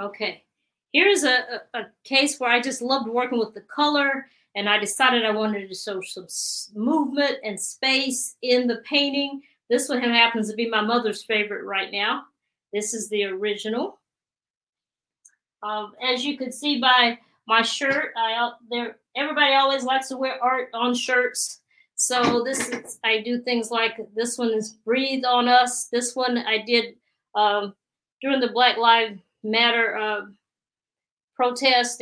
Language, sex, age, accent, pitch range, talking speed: English, female, 40-59, American, 215-260 Hz, 155 wpm